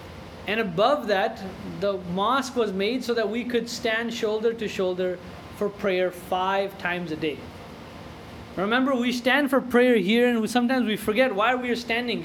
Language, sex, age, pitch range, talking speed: English, male, 20-39, 175-235 Hz, 170 wpm